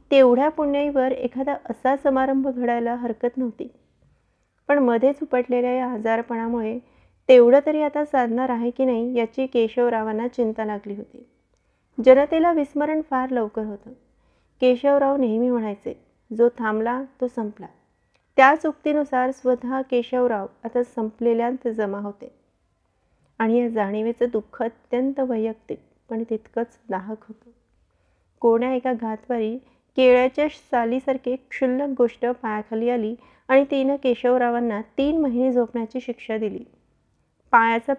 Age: 30-49